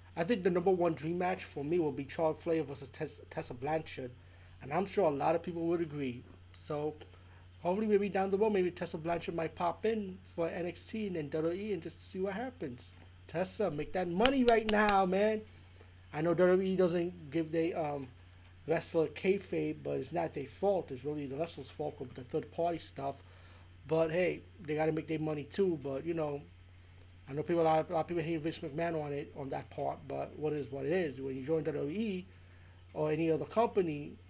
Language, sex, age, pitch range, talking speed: English, male, 30-49, 125-170 Hz, 210 wpm